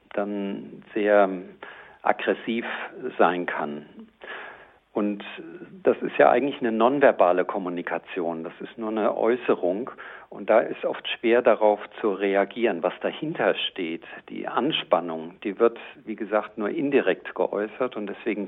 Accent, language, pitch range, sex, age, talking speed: German, German, 95-110 Hz, male, 50-69, 130 wpm